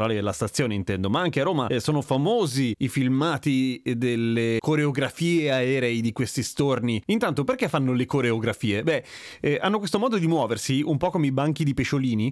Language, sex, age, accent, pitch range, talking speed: Italian, male, 30-49, native, 125-170 Hz, 180 wpm